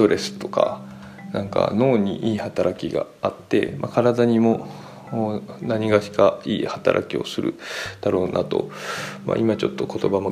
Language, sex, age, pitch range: Japanese, male, 20-39, 95-125 Hz